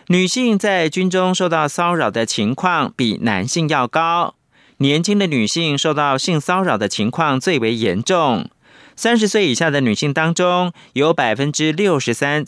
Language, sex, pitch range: Chinese, male, 130-180 Hz